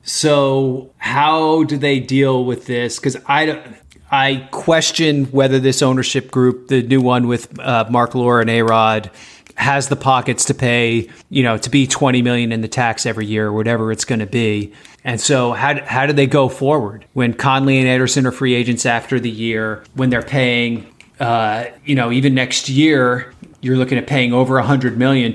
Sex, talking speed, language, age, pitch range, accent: male, 190 wpm, English, 30-49, 120-140 Hz, American